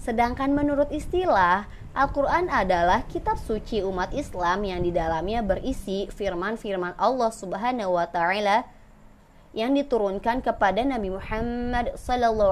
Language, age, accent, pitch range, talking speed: Indonesian, 20-39, native, 180-260 Hz, 110 wpm